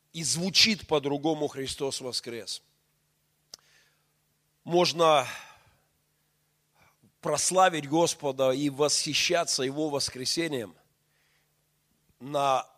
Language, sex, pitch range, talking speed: Russian, male, 125-155 Hz, 60 wpm